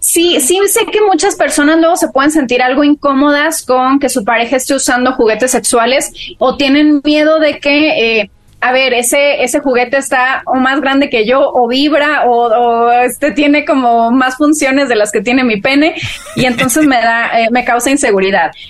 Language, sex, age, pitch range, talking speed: Spanish, female, 30-49, 235-285 Hz, 195 wpm